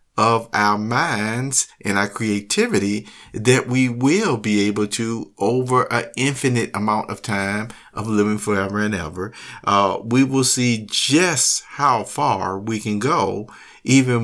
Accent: American